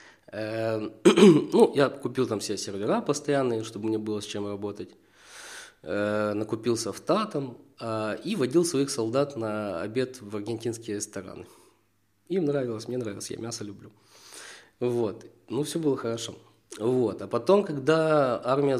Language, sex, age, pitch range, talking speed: Ukrainian, male, 20-39, 110-140 Hz, 135 wpm